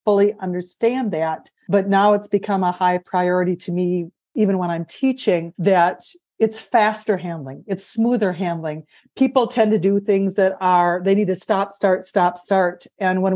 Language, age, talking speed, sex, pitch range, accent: English, 50-69, 175 wpm, female, 180-205 Hz, American